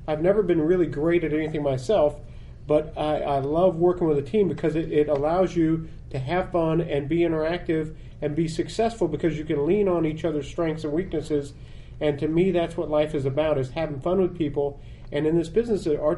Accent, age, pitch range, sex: American, 40-59, 150-175 Hz, male